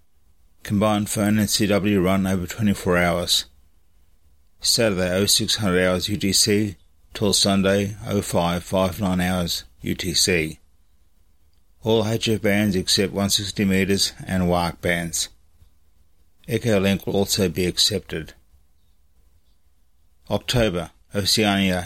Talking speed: 110 wpm